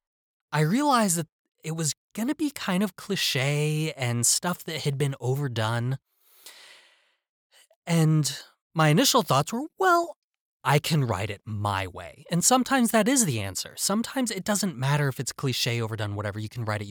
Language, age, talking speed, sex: English, 20-39, 170 wpm, male